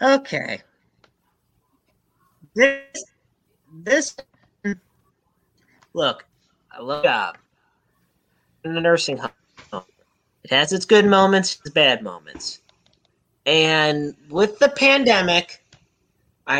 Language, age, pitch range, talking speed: English, 30-49, 175-270 Hz, 90 wpm